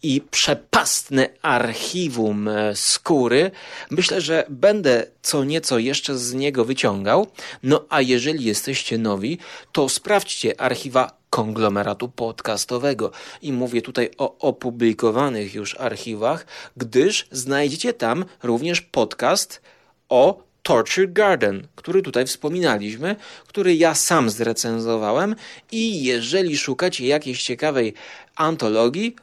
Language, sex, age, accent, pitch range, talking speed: Polish, male, 30-49, native, 120-165 Hz, 105 wpm